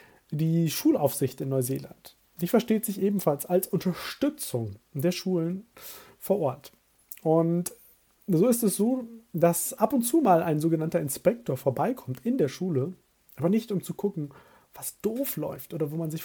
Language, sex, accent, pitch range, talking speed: German, male, German, 145-200 Hz, 160 wpm